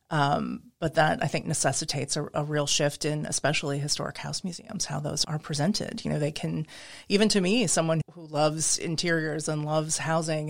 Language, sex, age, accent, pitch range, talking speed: English, female, 30-49, American, 150-165 Hz, 190 wpm